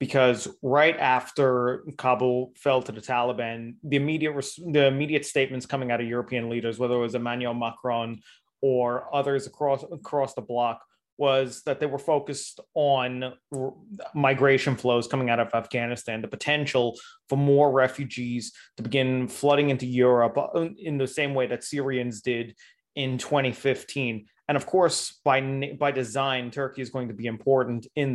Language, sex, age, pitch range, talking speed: Turkish, male, 20-39, 120-140 Hz, 160 wpm